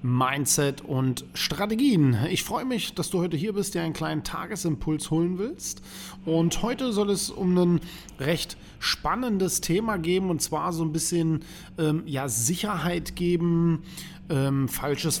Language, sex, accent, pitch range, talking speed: German, male, German, 145-180 Hz, 150 wpm